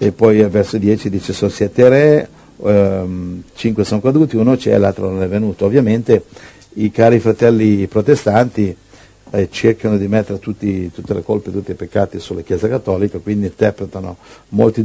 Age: 50-69